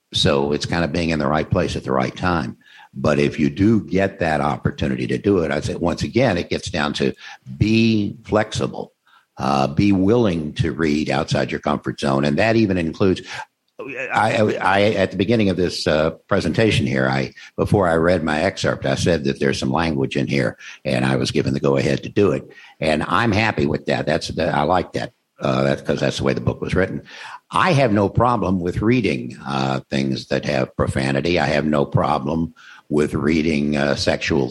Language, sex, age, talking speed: English, male, 60-79, 205 wpm